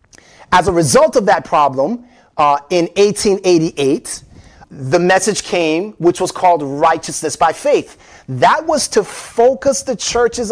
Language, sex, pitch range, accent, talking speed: English, male, 175-235 Hz, American, 135 wpm